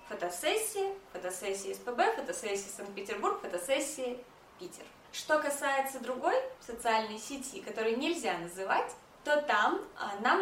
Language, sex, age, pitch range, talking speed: Russian, female, 20-39, 220-300 Hz, 105 wpm